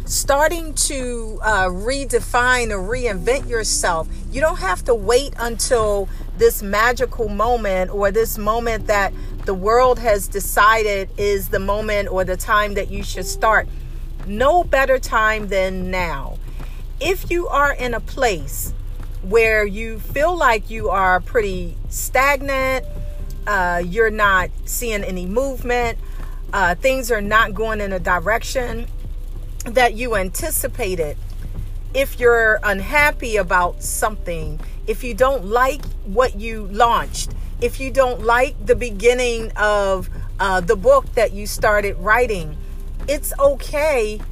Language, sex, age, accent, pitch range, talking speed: English, female, 40-59, American, 200-275 Hz, 135 wpm